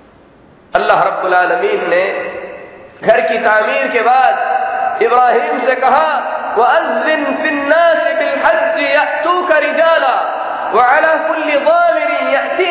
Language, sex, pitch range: Hindi, male, 250-325 Hz